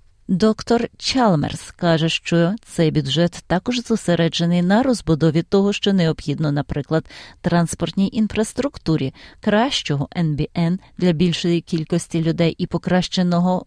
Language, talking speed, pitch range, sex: Ukrainian, 105 wpm, 165-205 Hz, female